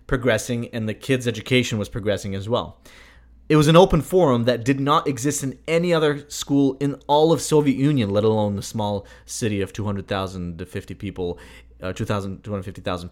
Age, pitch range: 30-49, 95-135 Hz